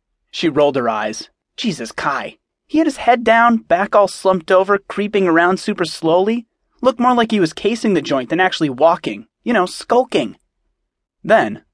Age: 30-49